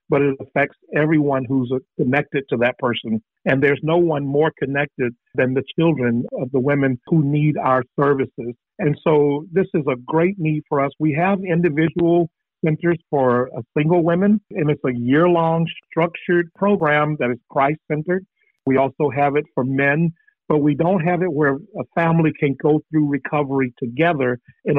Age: 50-69